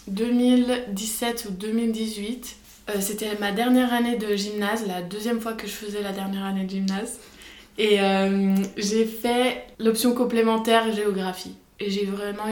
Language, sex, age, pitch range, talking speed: French, female, 20-39, 195-225 Hz, 150 wpm